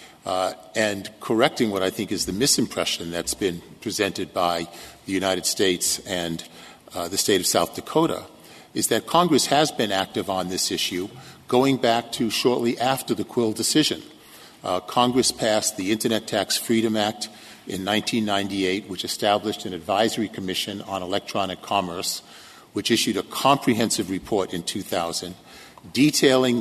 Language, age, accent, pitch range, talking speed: English, 50-69, American, 95-115 Hz, 150 wpm